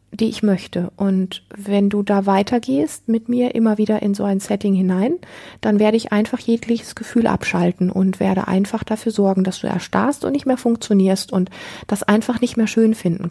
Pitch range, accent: 195-215 Hz, German